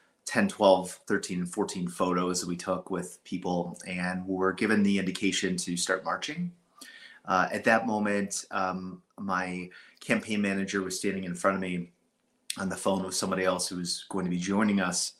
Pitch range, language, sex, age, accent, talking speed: 90-95 Hz, English, male, 30-49, American, 175 wpm